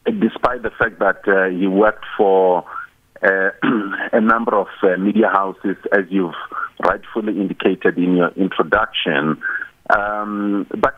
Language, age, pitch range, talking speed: English, 50-69, 95-130 Hz, 130 wpm